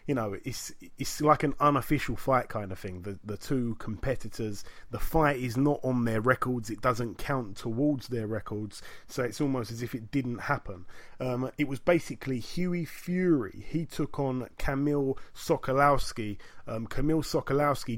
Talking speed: 165 wpm